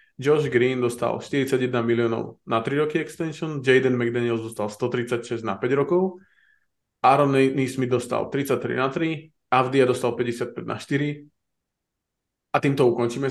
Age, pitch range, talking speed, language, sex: 20-39, 120-135 Hz, 135 wpm, Slovak, male